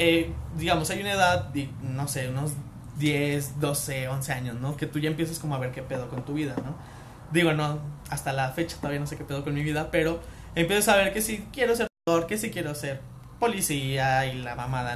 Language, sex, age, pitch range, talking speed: Spanish, male, 20-39, 130-165 Hz, 235 wpm